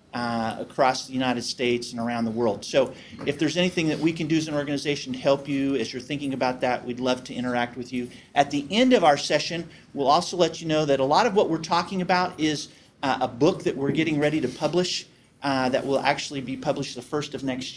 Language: English